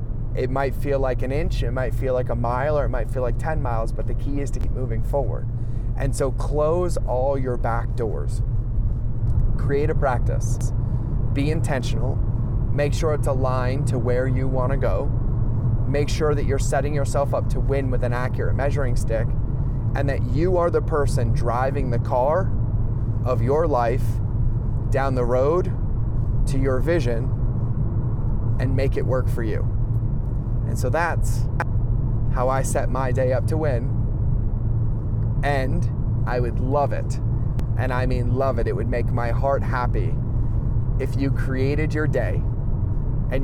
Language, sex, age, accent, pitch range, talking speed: English, male, 30-49, American, 115-130 Hz, 165 wpm